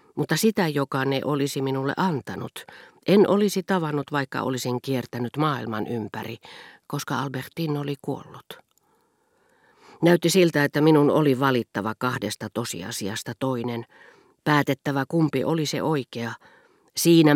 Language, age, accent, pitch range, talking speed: Finnish, 40-59, native, 120-155 Hz, 120 wpm